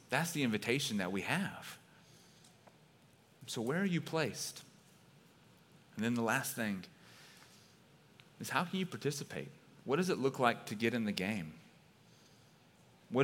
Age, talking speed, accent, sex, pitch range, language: 30-49, 145 wpm, American, male, 115-145 Hz, English